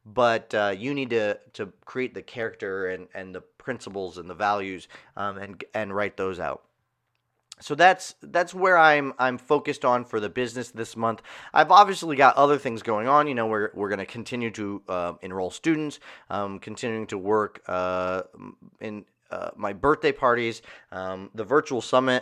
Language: English